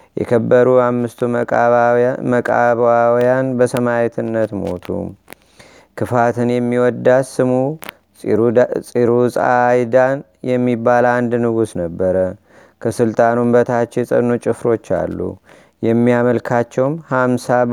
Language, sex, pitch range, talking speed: Amharic, male, 115-125 Hz, 75 wpm